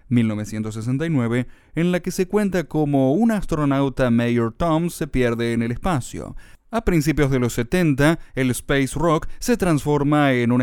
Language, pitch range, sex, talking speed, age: Spanish, 120-150 Hz, male, 160 wpm, 30-49